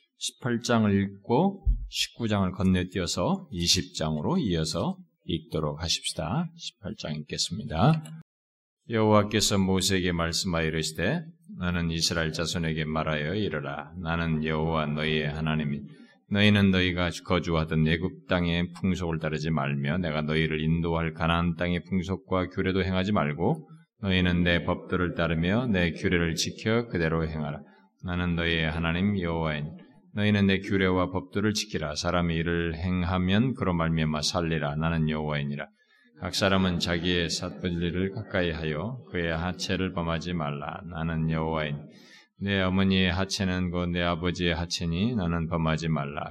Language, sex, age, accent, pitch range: Korean, male, 20-39, native, 80-95 Hz